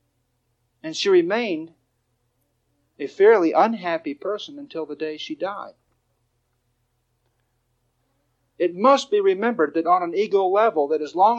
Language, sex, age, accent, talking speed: English, male, 50-69, American, 125 wpm